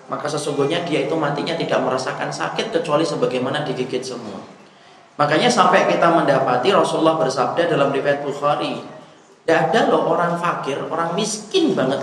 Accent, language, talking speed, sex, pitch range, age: native, Indonesian, 145 wpm, male, 155-195 Hz, 30-49